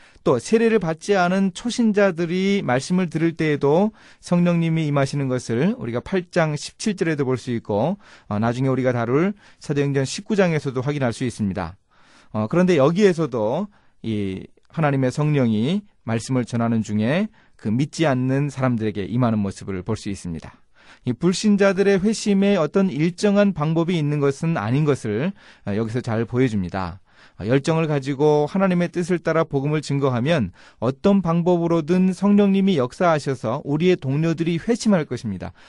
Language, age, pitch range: Korean, 30-49, 115-175 Hz